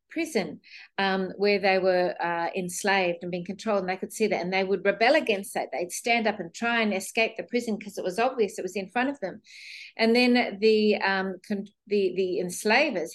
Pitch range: 185-220 Hz